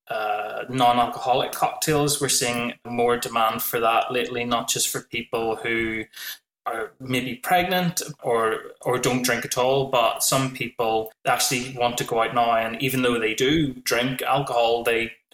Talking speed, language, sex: 160 wpm, English, male